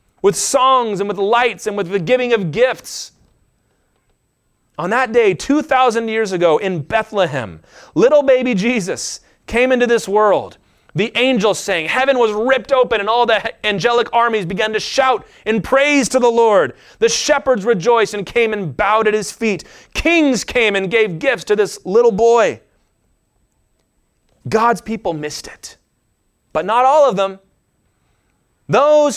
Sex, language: male, English